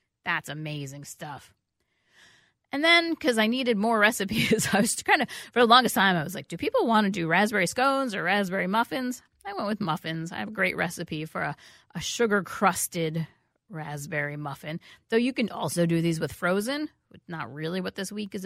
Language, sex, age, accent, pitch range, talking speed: English, female, 30-49, American, 170-215 Hz, 200 wpm